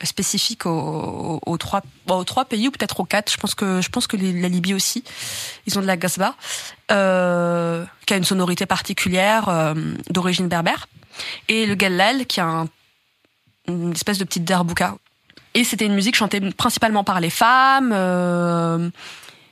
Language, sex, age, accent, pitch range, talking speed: French, female, 20-39, French, 175-210 Hz, 170 wpm